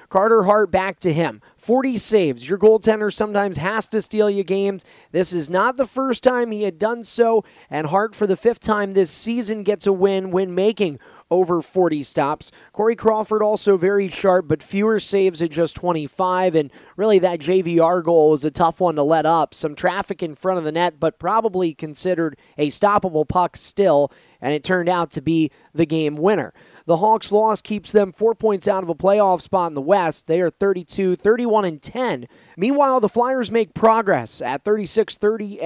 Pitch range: 165-210 Hz